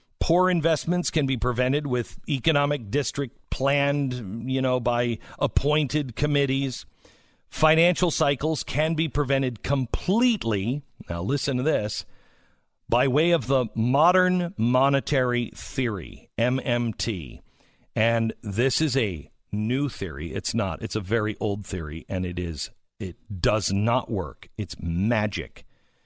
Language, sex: English, male